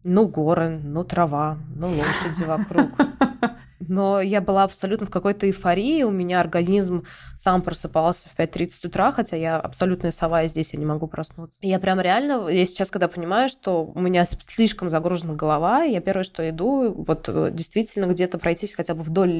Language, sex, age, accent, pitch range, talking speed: Russian, female, 20-39, native, 170-205 Hz, 175 wpm